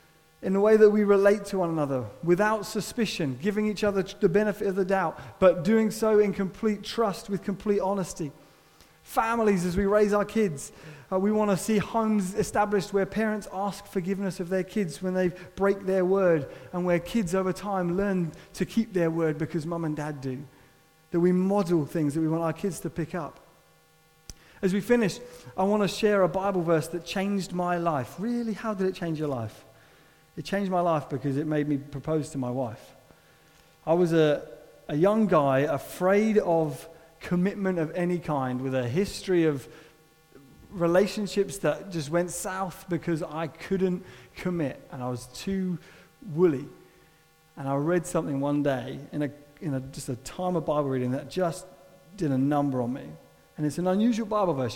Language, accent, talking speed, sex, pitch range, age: English, British, 190 wpm, male, 155-195 Hz, 30-49